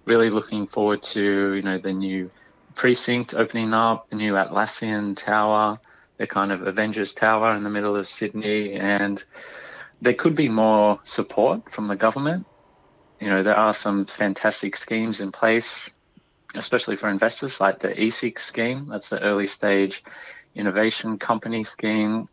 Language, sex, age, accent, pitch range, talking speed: English, male, 30-49, Australian, 100-115 Hz, 155 wpm